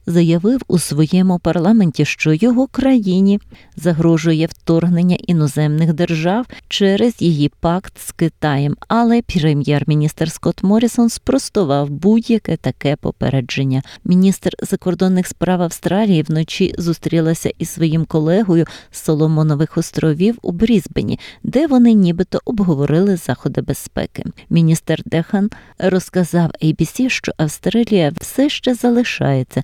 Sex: female